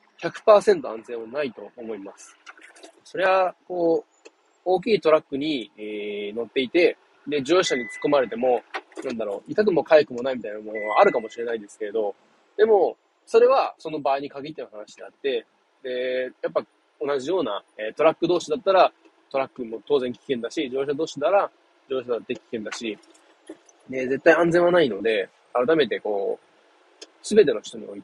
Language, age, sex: Japanese, 20-39, male